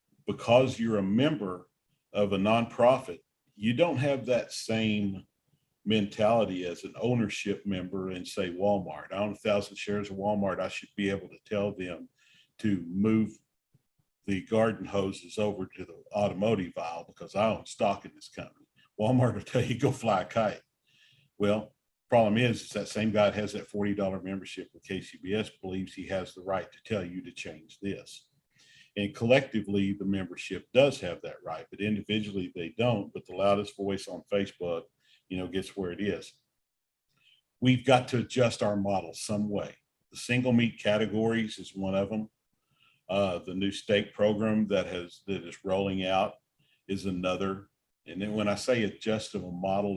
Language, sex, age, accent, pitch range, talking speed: English, male, 50-69, American, 95-110 Hz, 175 wpm